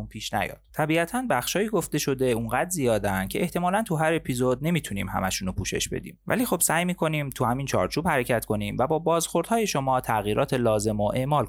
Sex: male